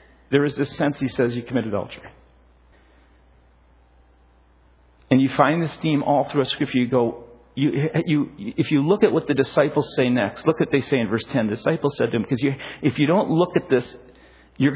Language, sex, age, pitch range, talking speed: English, male, 50-69, 110-155 Hz, 215 wpm